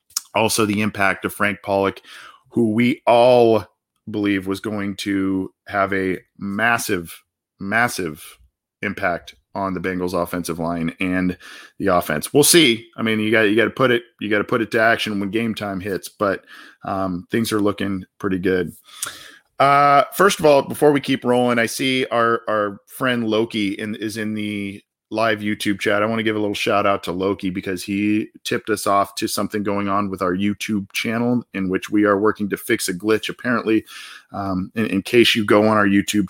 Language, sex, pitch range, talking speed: English, male, 95-115 Hz, 195 wpm